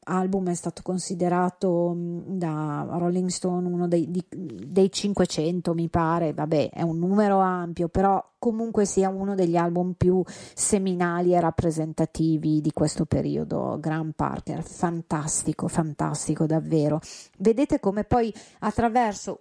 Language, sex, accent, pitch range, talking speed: Italian, female, native, 160-195 Hz, 125 wpm